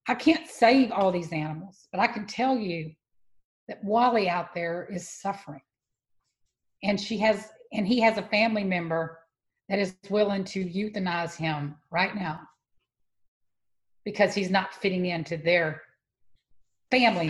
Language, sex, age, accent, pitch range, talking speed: English, female, 50-69, American, 170-245 Hz, 140 wpm